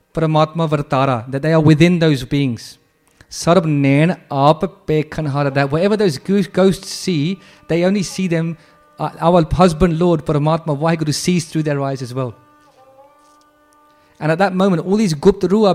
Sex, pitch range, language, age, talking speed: male, 145-185 Hz, English, 30-49, 135 wpm